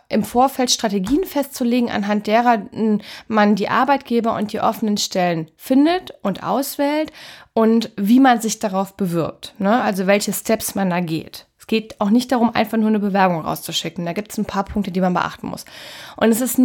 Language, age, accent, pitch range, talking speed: German, 10-29, German, 205-260 Hz, 185 wpm